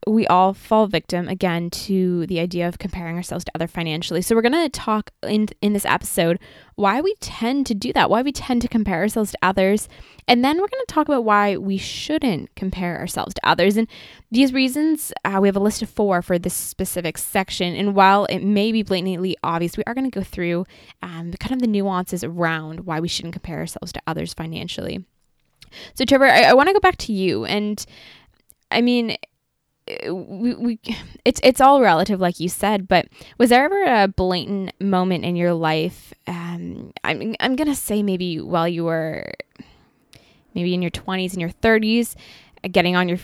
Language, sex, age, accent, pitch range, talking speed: English, female, 10-29, American, 175-220 Hz, 200 wpm